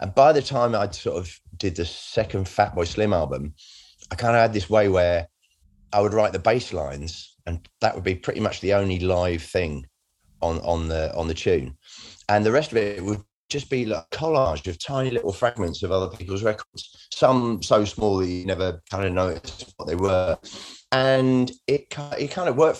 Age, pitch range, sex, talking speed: 30-49, 85-105 Hz, male, 215 wpm